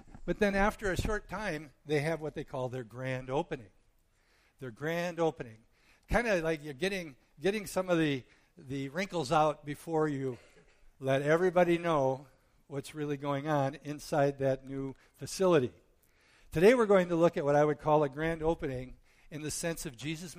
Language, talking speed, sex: English, 175 wpm, male